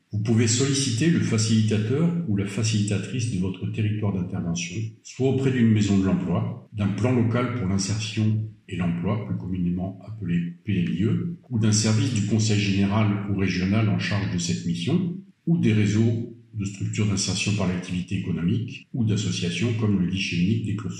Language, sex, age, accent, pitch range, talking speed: French, male, 50-69, French, 100-115 Hz, 170 wpm